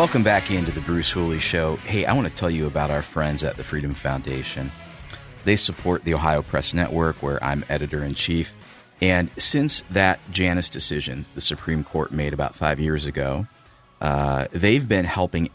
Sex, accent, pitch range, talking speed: male, American, 70-90 Hz, 185 wpm